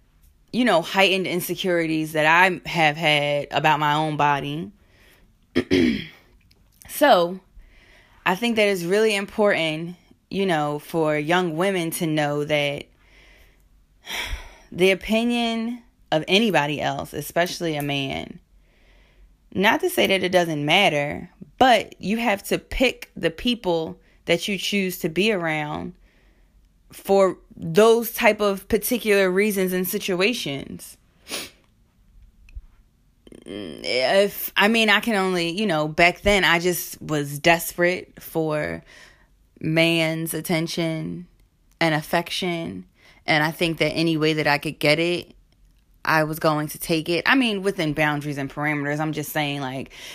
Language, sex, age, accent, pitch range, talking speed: English, female, 20-39, American, 145-190 Hz, 130 wpm